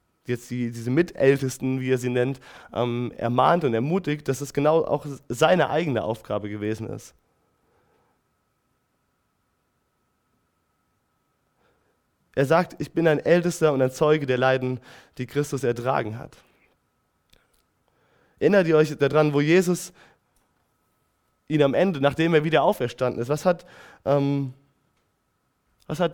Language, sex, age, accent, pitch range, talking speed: German, male, 20-39, German, 135-170 Hz, 120 wpm